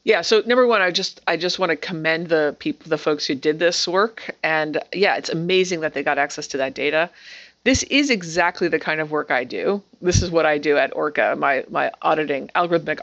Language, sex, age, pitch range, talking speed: English, female, 30-49, 160-205 Hz, 230 wpm